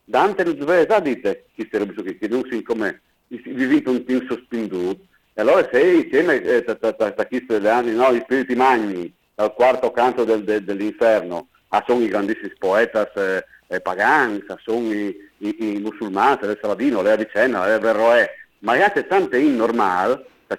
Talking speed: 130 wpm